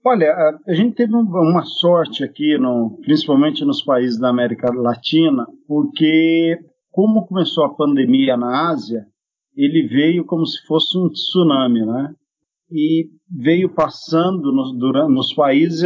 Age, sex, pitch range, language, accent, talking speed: 50-69, male, 140-200 Hz, Portuguese, Brazilian, 145 wpm